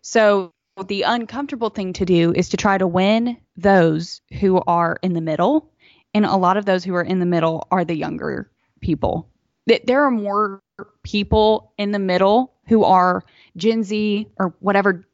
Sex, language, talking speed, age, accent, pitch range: female, English, 180 wpm, 10-29, American, 175-215 Hz